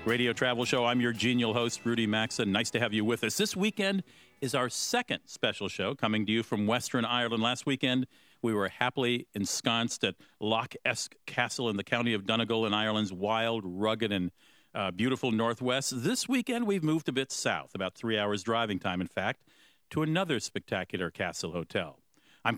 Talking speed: 190 wpm